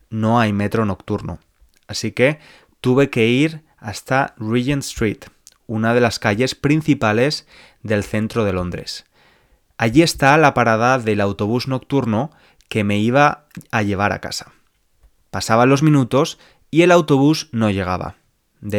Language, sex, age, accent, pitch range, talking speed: Spanish, male, 20-39, Spanish, 105-135 Hz, 140 wpm